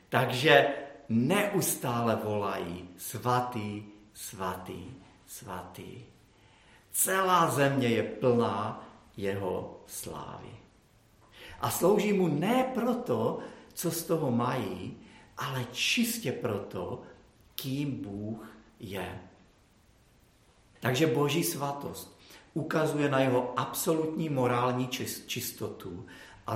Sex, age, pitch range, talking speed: male, 50-69, 105-135 Hz, 85 wpm